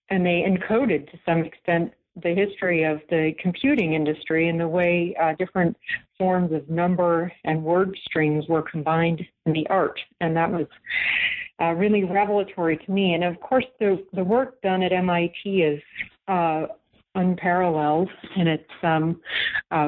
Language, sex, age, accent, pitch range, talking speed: English, female, 50-69, American, 165-200 Hz, 155 wpm